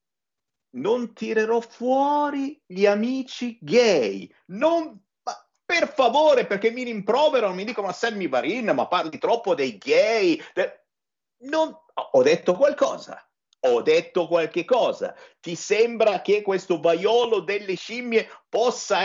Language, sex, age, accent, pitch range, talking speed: Italian, male, 50-69, native, 160-255 Hz, 125 wpm